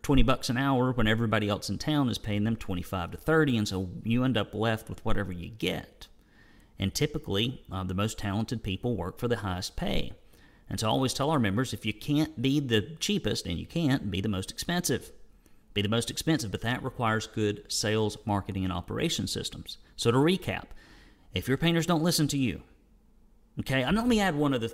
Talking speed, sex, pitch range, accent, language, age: 205 wpm, male, 95-130 Hz, American, English, 40-59